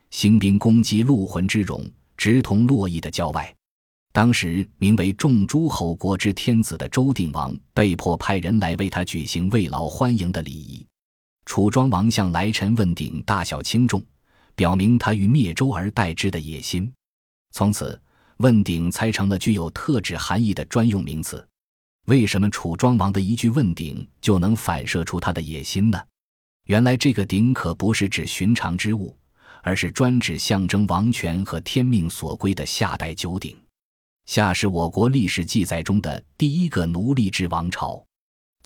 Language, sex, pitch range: Chinese, male, 85-115 Hz